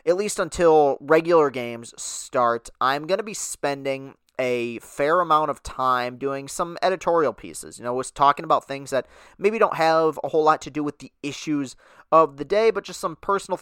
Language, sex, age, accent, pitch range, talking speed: English, male, 30-49, American, 130-165 Hz, 205 wpm